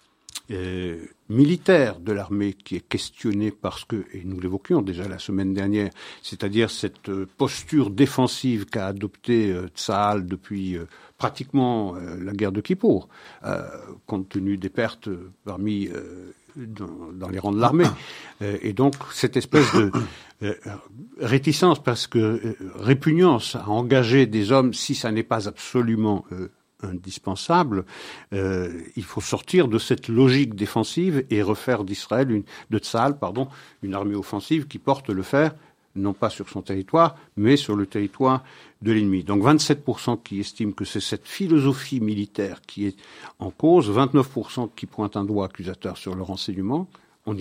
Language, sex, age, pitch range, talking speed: French, male, 60-79, 100-130 Hz, 160 wpm